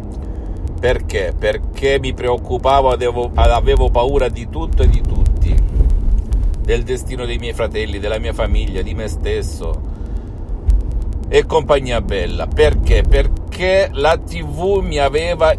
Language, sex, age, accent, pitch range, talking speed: Italian, male, 50-69, native, 80-110 Hz, 120 wpm